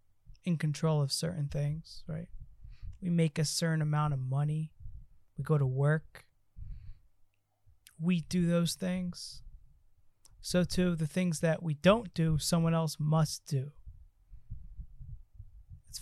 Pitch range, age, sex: 110-175 Hz, 20-39, male